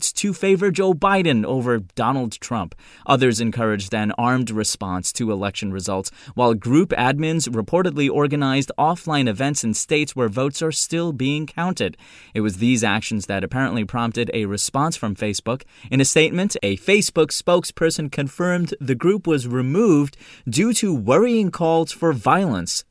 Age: 30-49